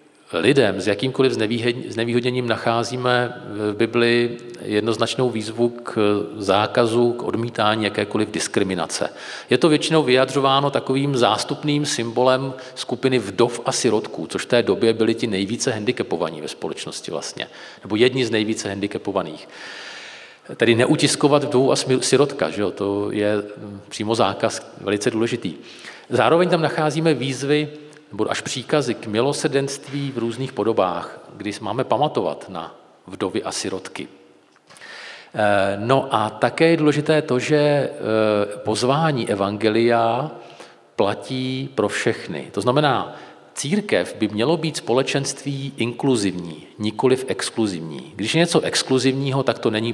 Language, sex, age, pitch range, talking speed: Czech, male, 40-59, 110-135 Hz, 125 wpm